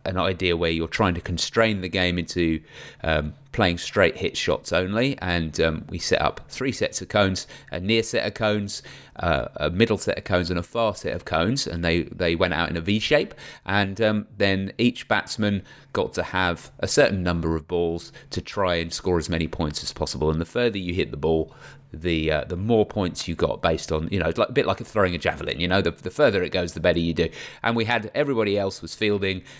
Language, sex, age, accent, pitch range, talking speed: English, male, 30-49, British, 85-105 Hz, 240 wpm